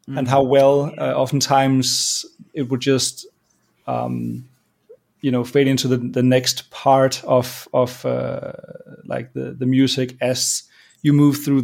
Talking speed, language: 145 wpm, English